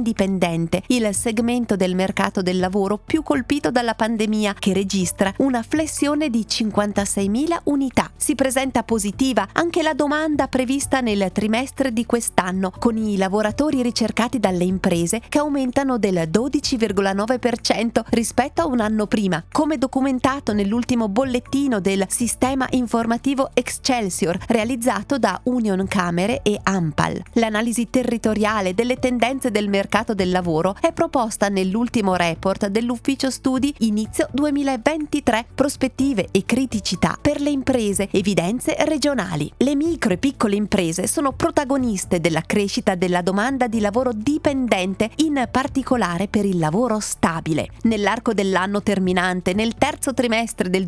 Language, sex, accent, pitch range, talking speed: Italian, female, native, 200-270 Hz, 125 wpm